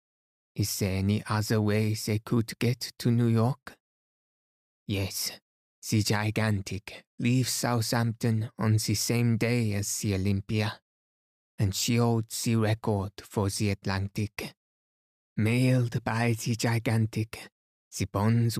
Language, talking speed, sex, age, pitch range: English, 120 wpm, male, 20-39, 105-115 Hz